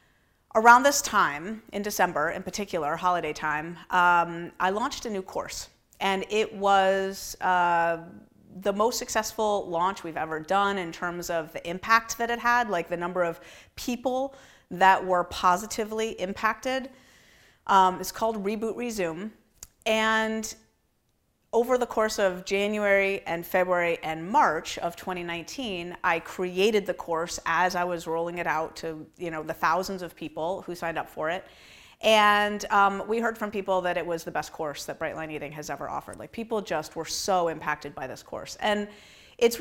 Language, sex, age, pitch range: English, female, 30-49, 170-220 Hz